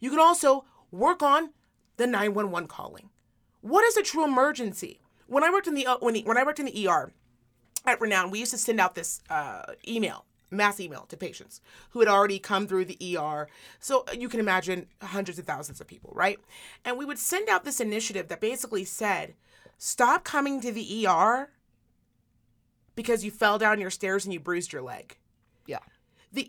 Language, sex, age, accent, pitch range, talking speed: English, female, 30-49, American, 200-270 Hz, 195 wpm